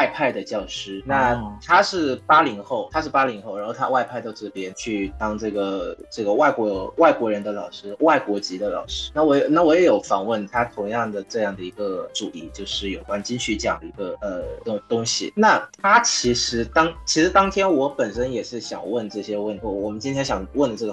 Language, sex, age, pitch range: Vietnamese, male, 20-39, 105-135 Hz